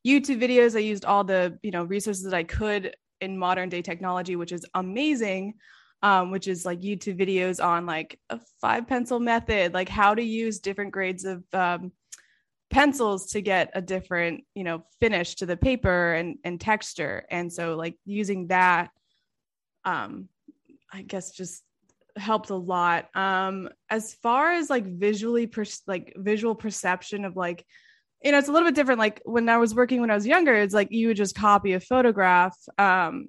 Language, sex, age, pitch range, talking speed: English, female, 20-39, 185-230 Hz, 180 wpm